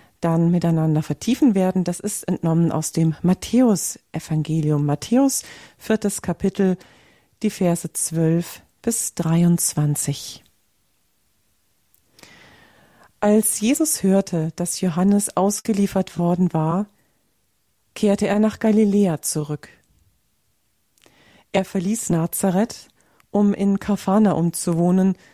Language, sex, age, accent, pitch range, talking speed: German, female, 40-59, German, 165-210 Hz, 90 wpm